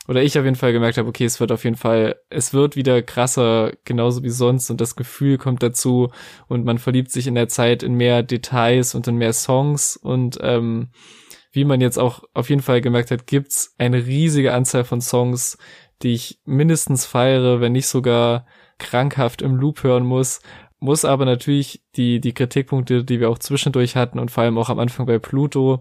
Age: 20-39